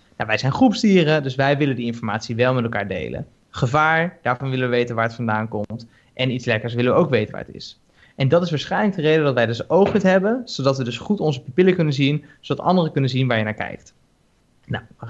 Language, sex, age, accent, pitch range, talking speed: Dutch, male, 20-39, Dutch, 125-180 Hz, 245 wpm